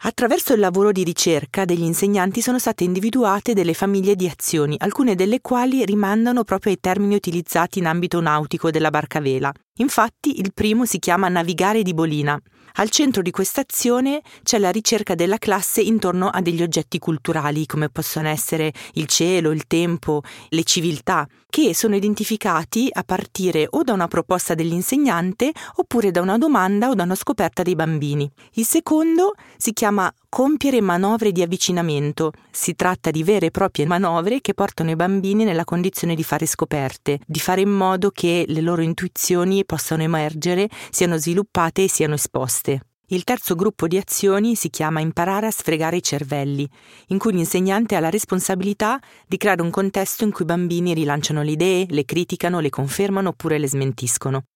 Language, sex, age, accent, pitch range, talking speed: Italian, female, 30-49, native, 160-210 Hz, 170 wpm